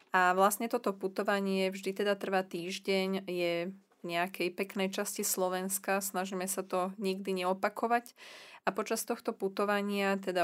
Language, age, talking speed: Slovak, 20-39, 140 wpm